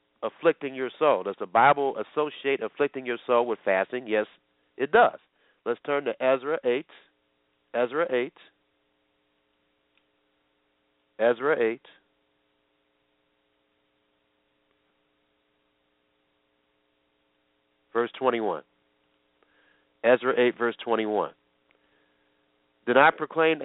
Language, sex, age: English, male, 50-69